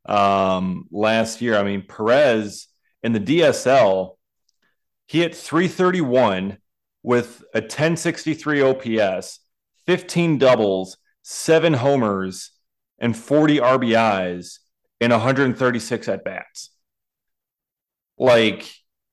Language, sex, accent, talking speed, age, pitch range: English, male, American, 90 wpm, 30-49, 110-150 Hz